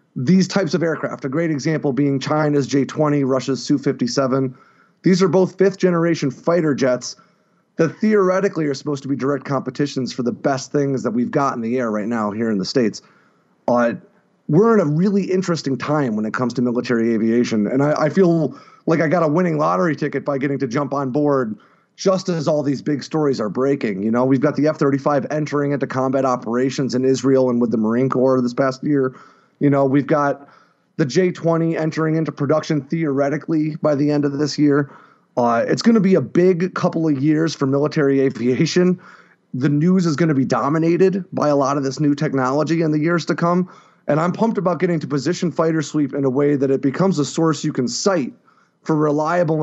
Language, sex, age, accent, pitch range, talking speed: English, male, 30-49, American, 135-165 Hz, 205 wpm